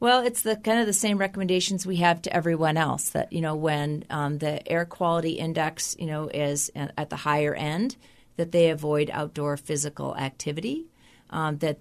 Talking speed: 190 wpm